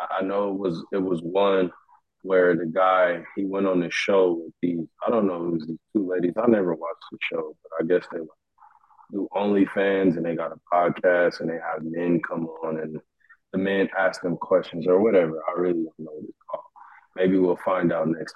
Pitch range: 85-105 Hz